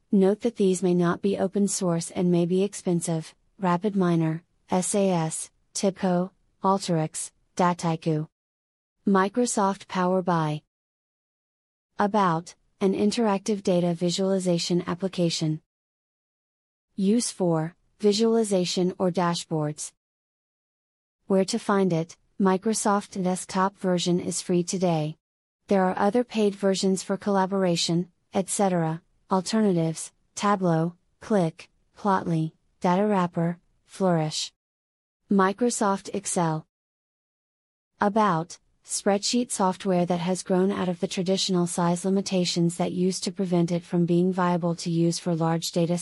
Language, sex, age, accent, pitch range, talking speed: English, female, 30-49, American, 170-195 Hz, 110 wpm